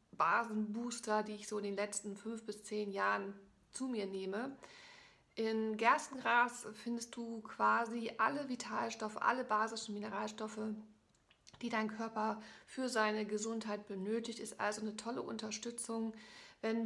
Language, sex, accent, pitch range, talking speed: German, female, German, 210-230 Hz, 130 wpm